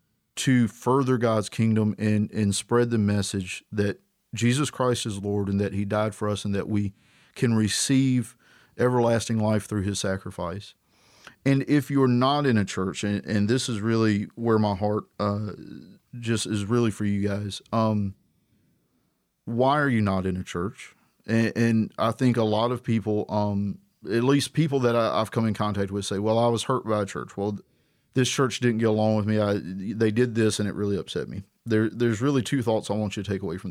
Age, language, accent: 40-59, English, American